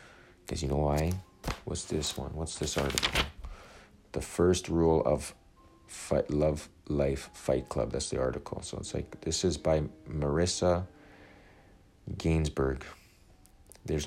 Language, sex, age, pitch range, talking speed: English, male, 40-59, 75-90 Hz, 130 wpm